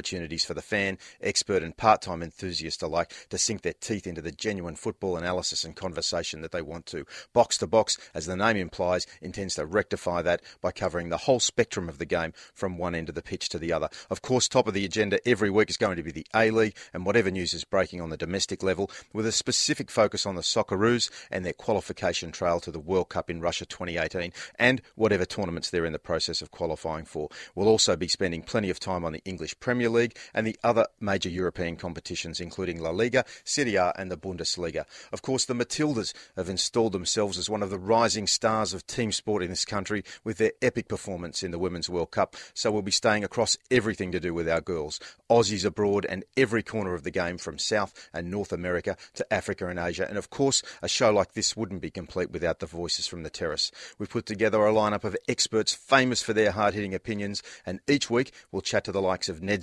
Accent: Australian